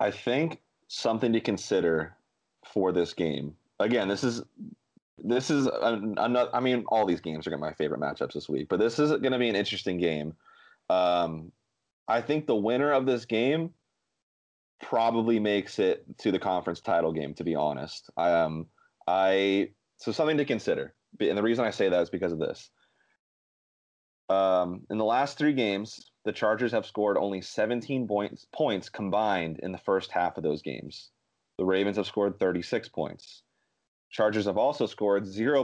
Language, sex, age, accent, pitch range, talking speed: English, male, 30-49, American, 95-125 Hz, 180 wpm